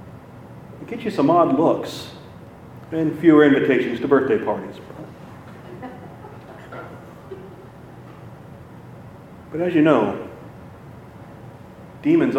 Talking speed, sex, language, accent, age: 75 wpm, male, English, American, 40-59